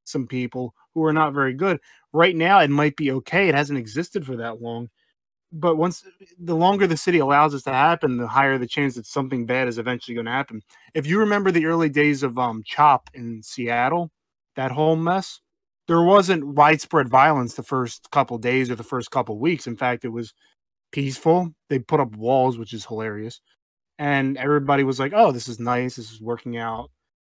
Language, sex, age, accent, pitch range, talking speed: English, male, 20-39, American, 125-160 Hz, 205 wpm